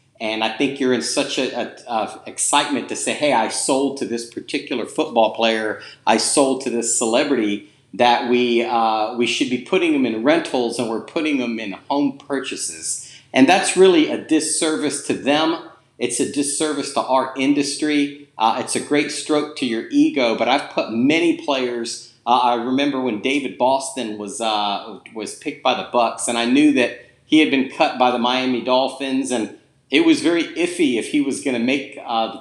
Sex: male